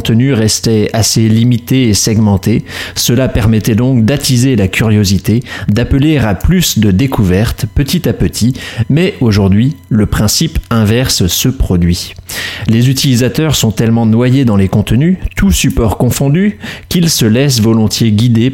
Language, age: French, 30-49